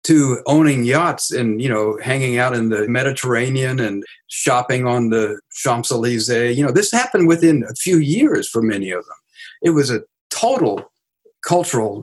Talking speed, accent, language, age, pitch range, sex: 165 wpm, American, English, 50-69, 110-140 Hz, male